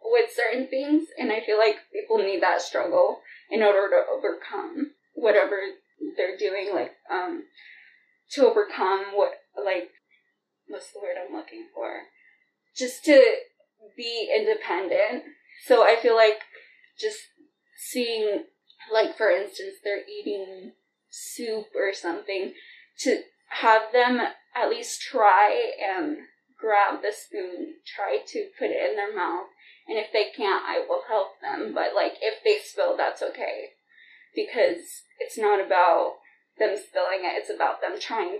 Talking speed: 140 wpm